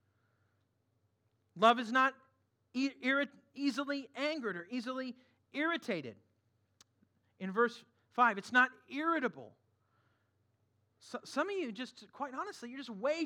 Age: 40-59